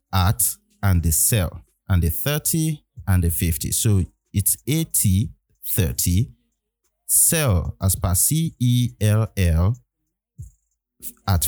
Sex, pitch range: male, 90-120 Hz